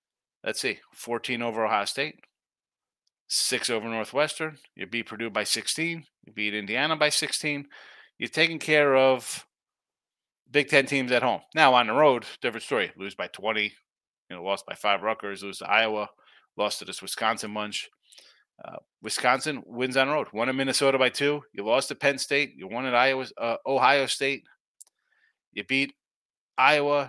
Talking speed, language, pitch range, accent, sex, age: 170 wpm, English, 115-145 Hz, American, male, 30-49